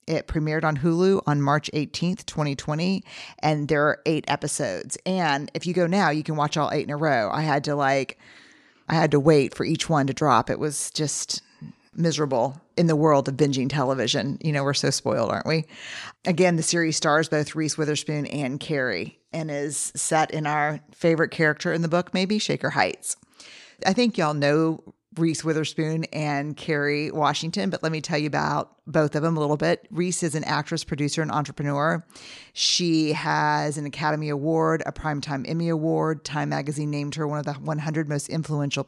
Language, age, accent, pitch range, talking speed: English, 40-59, American, 145-165 Hz, 195 wpm